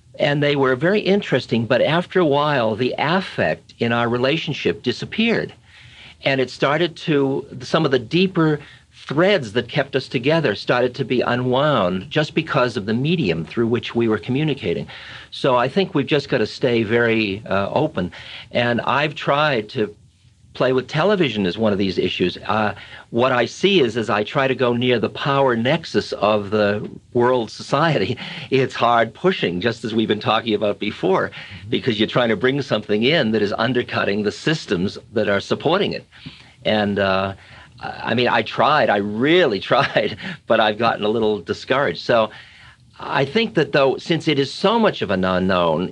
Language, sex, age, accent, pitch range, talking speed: English, male, 50-69, American, 115-145 Hz, 180 wpm